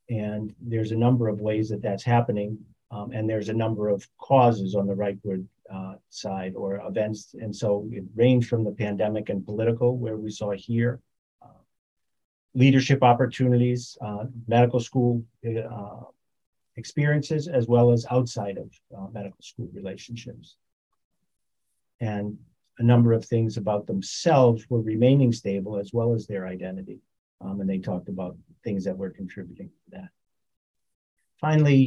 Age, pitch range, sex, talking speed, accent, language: 40-59, 105-120 Hz, male, 155 wpm, American, English